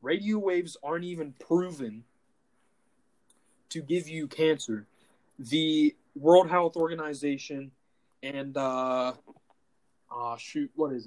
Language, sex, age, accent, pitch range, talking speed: English, male, 20-39, American, 140-195 Hz, 105 wpm